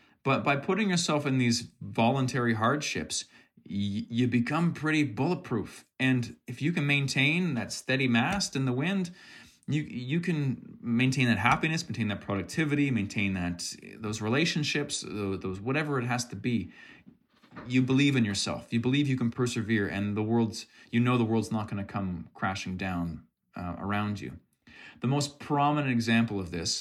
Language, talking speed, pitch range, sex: English, 165 wpm, 100-125 Hz, male